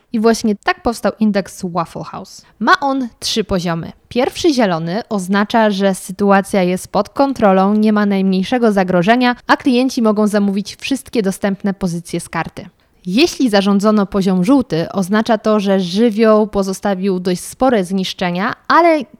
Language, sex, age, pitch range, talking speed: Polish, female, 20-39, 195-235 Hz, 140 wpm